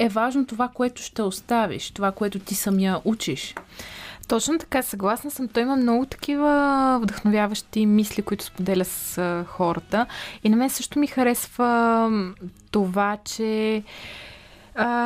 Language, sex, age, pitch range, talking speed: Bulgarian, female, 20-39, 205-235 Hz, 135 wpm